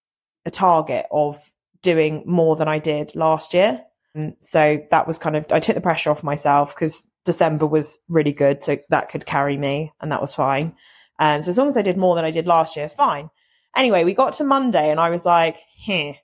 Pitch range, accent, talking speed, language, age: 155-225 Hz, British, 220 wpm, English, 30-49